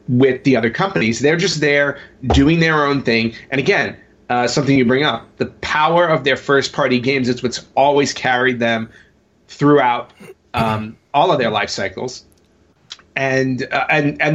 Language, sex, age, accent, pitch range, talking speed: English, male, 30-49, American, 120-155 Hz, 165 wpm